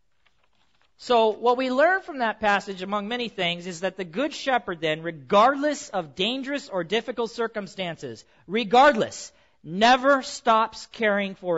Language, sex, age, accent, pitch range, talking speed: English, male, 40-59, American, 205-300 Hz, 140 wpm